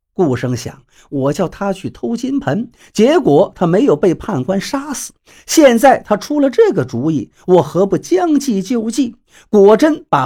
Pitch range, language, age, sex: 160-245 Hz, Chinese, 50-69, male